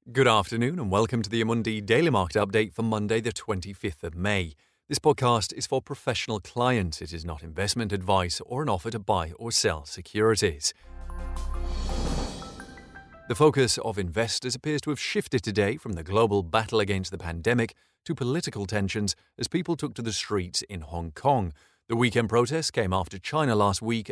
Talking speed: 175 wpm